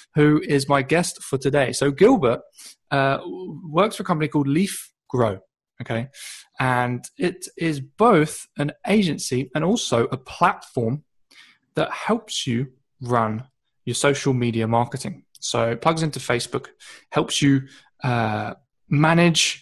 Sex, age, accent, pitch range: male, 20-39, British, 125-170 Hz